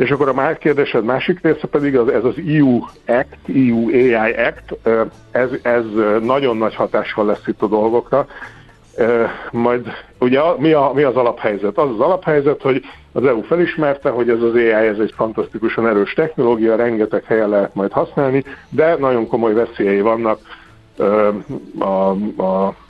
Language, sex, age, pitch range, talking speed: Hungarian, male, 60-79, 105-130 Hz, 150 wpm